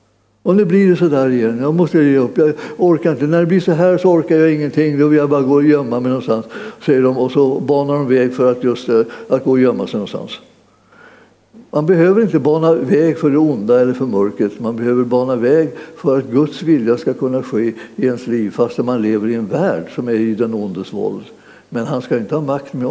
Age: 60-79